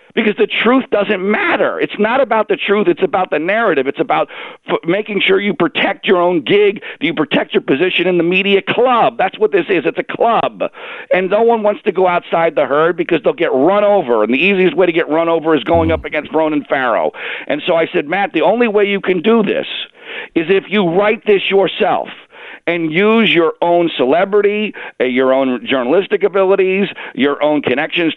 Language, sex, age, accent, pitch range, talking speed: English, male, 50-69, American, 135-205 Hz, 210 wpm